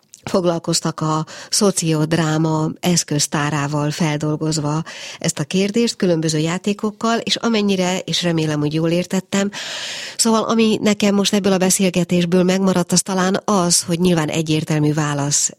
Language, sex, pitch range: Hungarian, female, 150-180 Hz